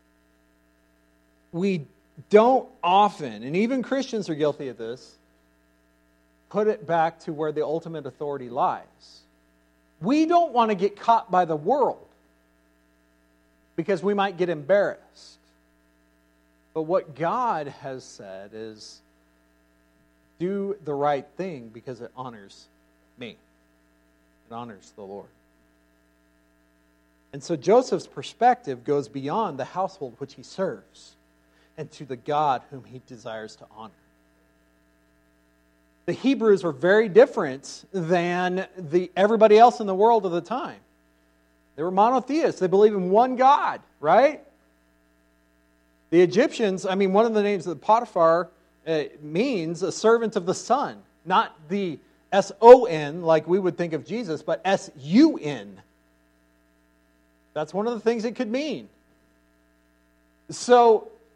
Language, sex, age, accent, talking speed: English, male, 50-69, American, 130 wpm